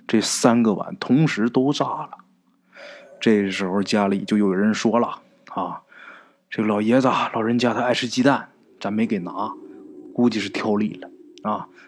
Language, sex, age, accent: Chinese, male, 20-39, native